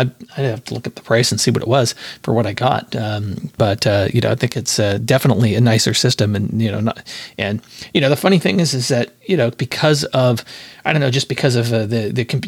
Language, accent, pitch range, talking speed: English, American, 115-145 Hz, 270 wpm